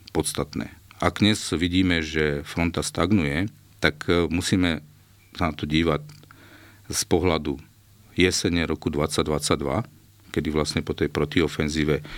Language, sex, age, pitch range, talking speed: Slovak, male, 50-69, 75-95 Hz, 115 wpm